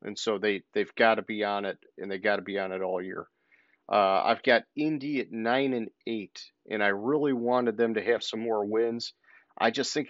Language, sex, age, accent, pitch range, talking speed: English, male, 40-59, American, 105-130 Hz, 230 wpm